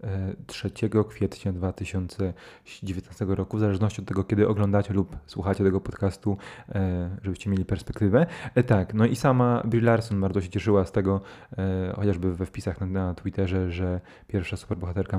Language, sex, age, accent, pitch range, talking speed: Polish, male, 20-39, native, 100-120 Hz, 140 wpm